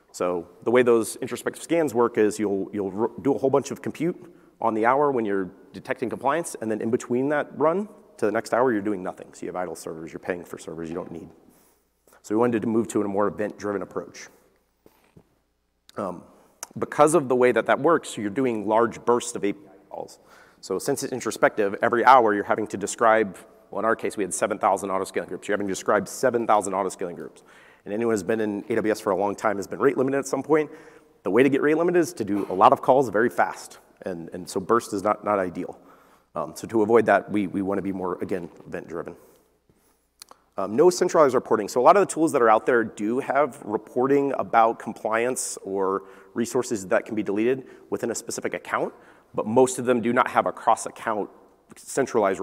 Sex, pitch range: male, 100-130 Hz